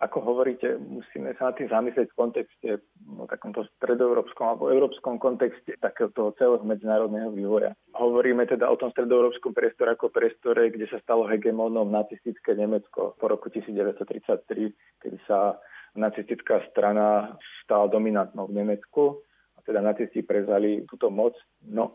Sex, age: male, 40-59